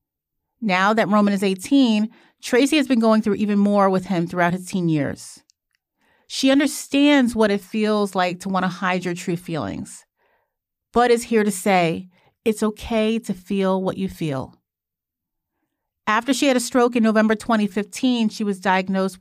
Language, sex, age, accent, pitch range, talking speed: English, female, 40-59, American, 190-245 Hz, 170 wpm